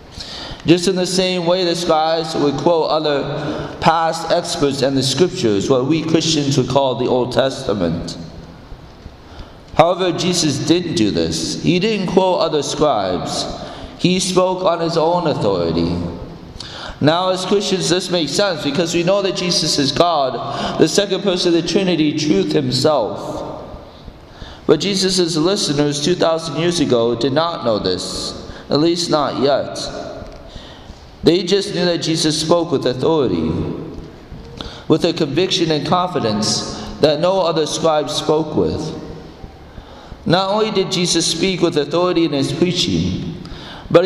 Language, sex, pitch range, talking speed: English, male, 135-180 Hz, 140 wpm